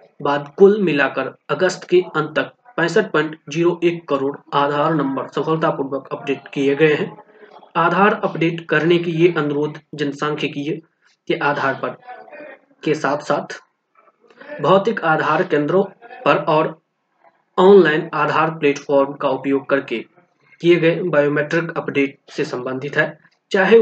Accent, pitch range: native, 145-180 Hz